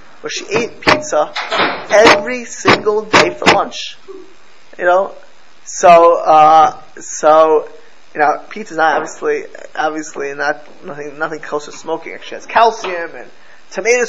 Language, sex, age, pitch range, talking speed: English, male, 20-39, 170-250 Hz, 130 wpm